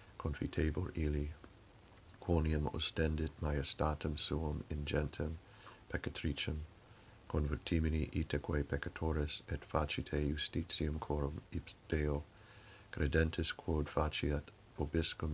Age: 60-79